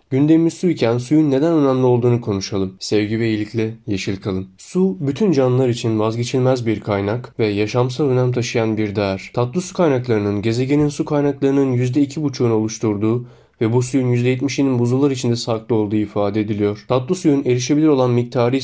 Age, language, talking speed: 30-49, Turkish, 155 wpm